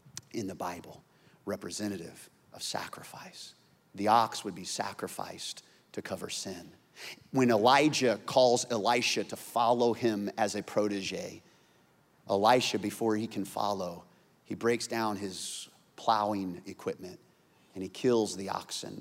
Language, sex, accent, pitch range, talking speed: English, male, American, 105-125 Hz, 125 wpm